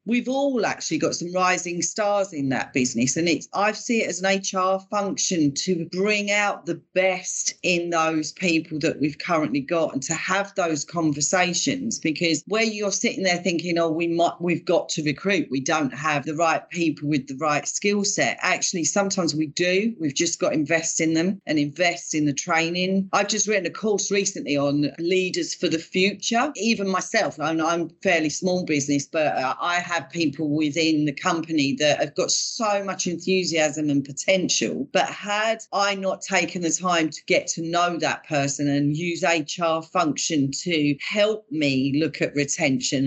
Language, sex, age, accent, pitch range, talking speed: English, female, 40-59, British, 155-195 Hz, 190 wpm